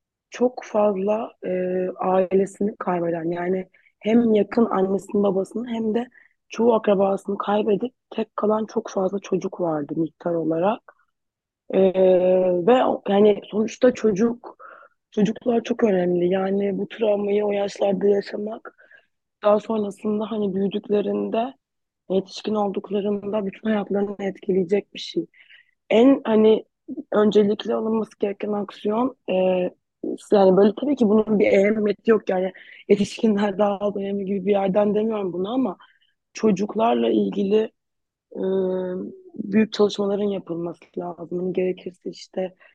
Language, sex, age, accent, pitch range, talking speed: Turkish, female, 20-39, native, 185-215 Hz, 115 wpm